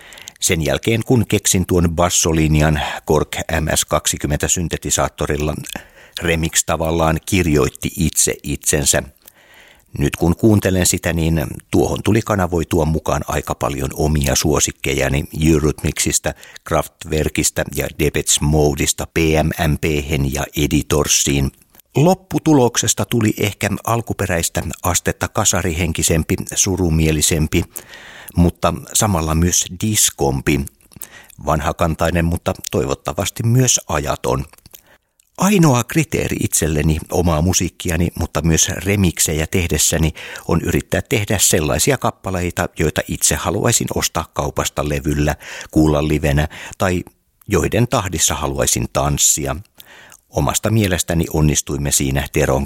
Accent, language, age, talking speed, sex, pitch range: native, Finnish, 50-69, 95 wpm, male, 75-95 Hz